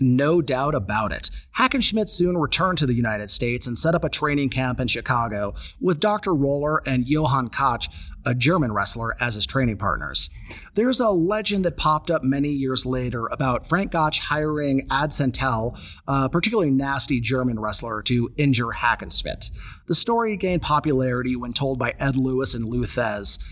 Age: 30-49